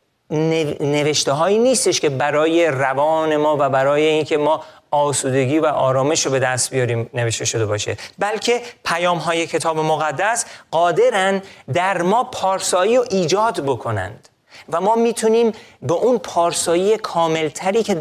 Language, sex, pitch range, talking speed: Persian, male, 140-190 Hz, 135 wpm